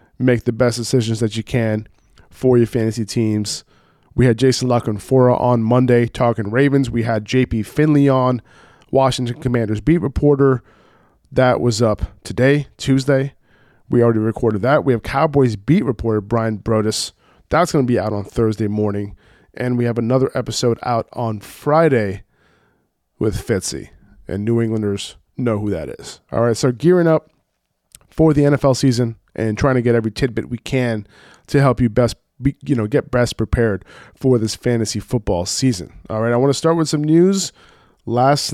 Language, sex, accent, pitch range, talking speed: English, male, American, 110-135 Hz, 175 wpm